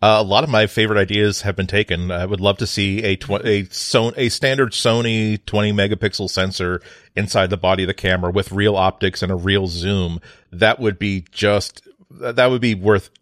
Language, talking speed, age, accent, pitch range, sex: English, 210 wpm, 40-59, American, 95-110 Hz, male